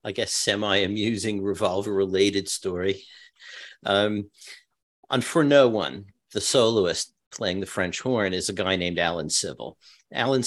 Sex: male